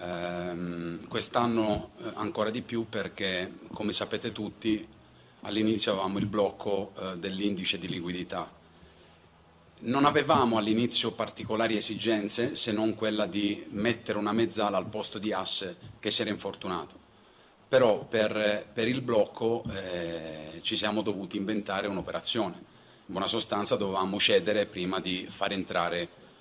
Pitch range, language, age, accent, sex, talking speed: 90-110 Hz, Italian, 40-59, native, male, 125 wpm